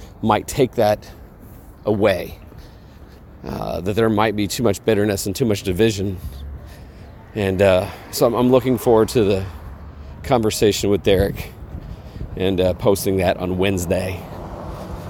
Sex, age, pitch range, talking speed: male, 40-59, 90-110 Hz, 130 wpm